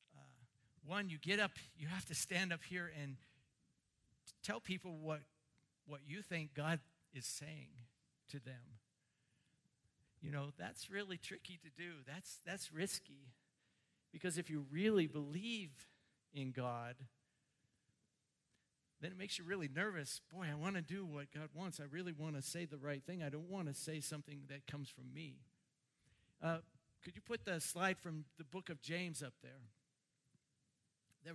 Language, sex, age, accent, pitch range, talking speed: English, male, 50-69, American, 140-175 Hz, 165 wpm